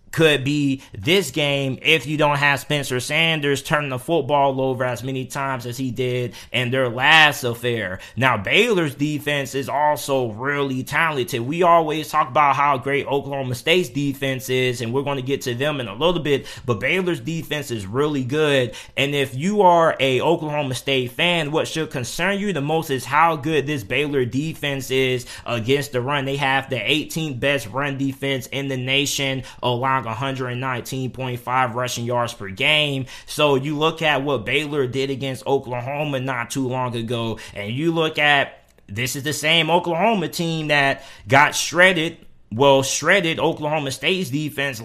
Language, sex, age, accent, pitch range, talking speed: English, male, 20-39, American, 130-155 Hz, 175 wpm